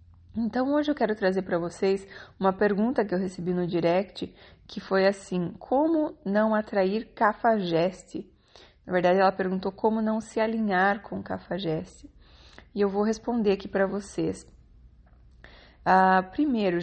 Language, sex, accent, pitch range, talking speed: Portuguese, female, Brazilian, 175-220 Hz, 140 wpm